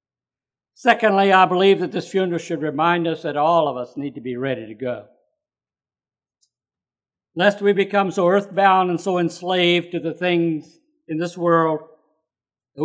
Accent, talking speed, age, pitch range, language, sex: American, 160 wpm, 50-69, 140-205 Hz, English, male